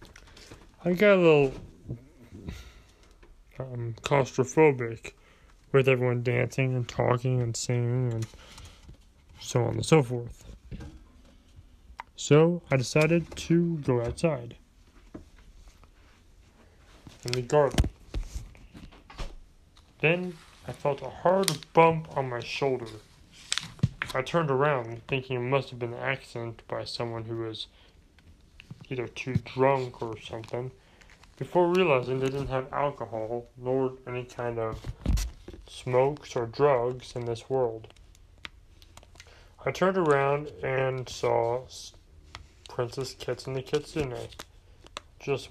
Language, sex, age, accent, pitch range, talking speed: English, male, 20-39, American, 90-135 Hz, 110 wpm